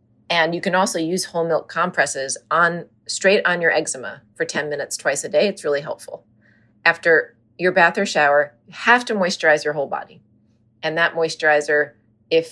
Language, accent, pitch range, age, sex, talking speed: English, American, 145-180 Hz, 30-49, female, 180 wpm